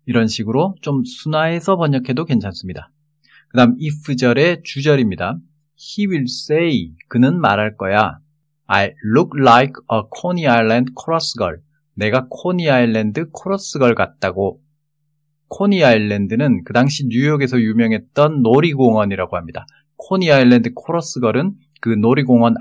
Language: Korean